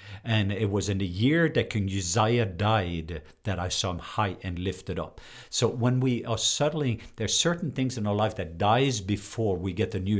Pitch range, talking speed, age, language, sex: 95-120 Hz, 220 wpm, 50-69, English, male